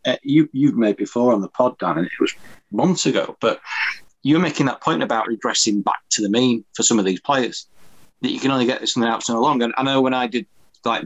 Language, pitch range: English, 105-125 Hz